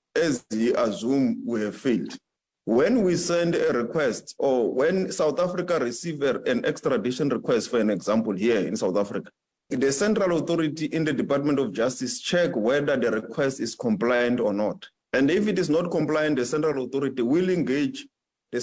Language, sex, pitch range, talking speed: English, male, 130-195 Hz, 175 wpm